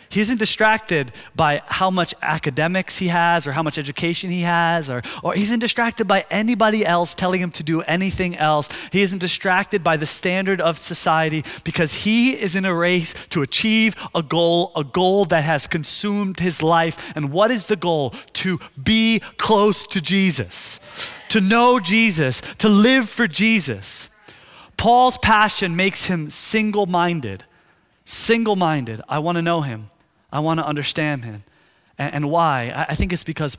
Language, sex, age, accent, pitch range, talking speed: English, male, 30-49, American, 140-190 Hz, 165 wpm